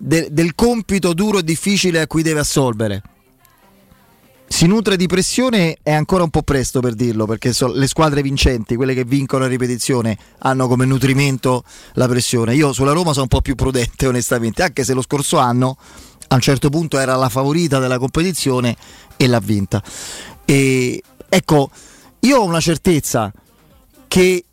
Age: 30-49